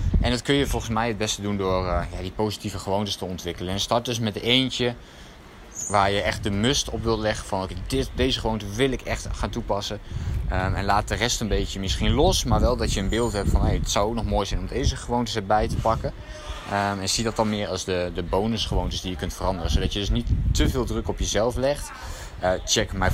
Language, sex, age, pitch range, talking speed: Dutch, male, 20-39, 95-115 Hz, 245 wpm